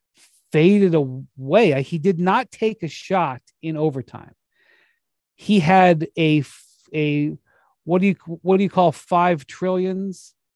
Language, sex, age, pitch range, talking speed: English, male, 40-59, 150-190 Hz, 130 wpm